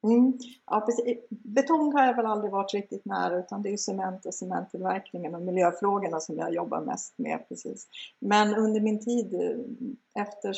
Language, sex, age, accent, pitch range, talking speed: Swedish, female, 50-69, native, 185-245 Hz, 170 wpm